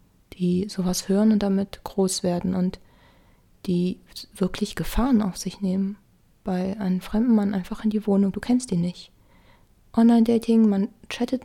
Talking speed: 150 wpm